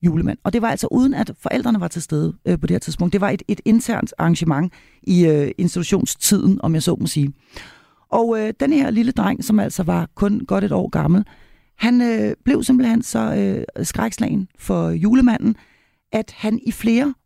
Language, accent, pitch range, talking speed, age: Danish, native, 170-230 Hz, 200 wpm, 40-59